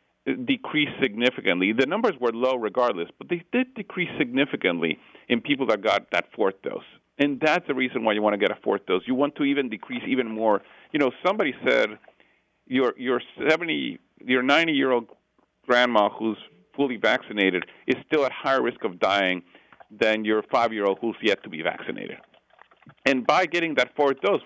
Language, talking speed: English, 175 wpm